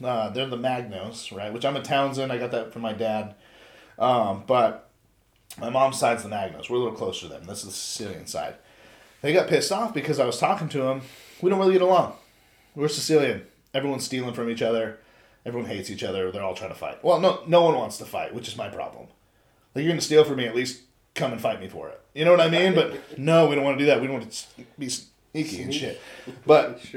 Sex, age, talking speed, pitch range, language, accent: male, 30-49, 250 wpm, 115-160 Hz, English, American